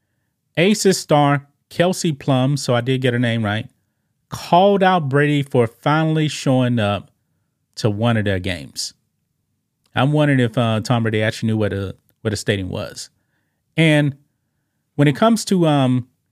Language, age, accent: English, 30-49, American